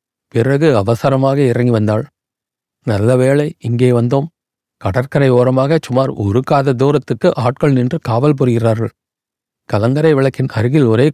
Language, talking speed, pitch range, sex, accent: Tamil, 115 wpm, 120-145 Hz, male, native